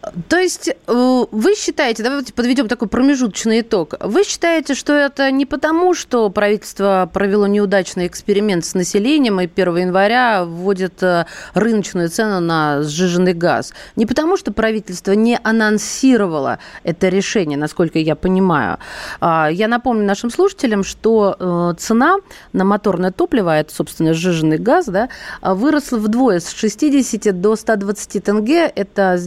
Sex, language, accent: female, Russian, native